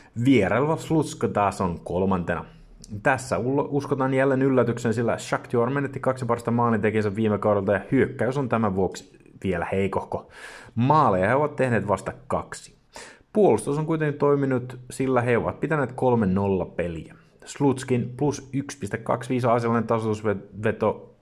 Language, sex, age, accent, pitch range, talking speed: Finnish, male, 30-49, native, 100-130 Hz, 130 wpm